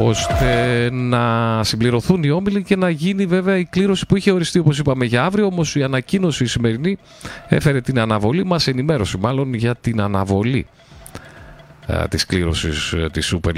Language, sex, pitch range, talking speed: Greek, male, 105-160 Hz, 170 wpm